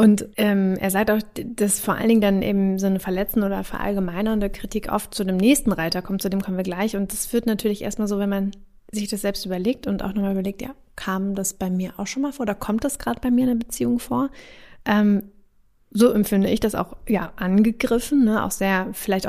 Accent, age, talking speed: German, 30-49, 235 wpm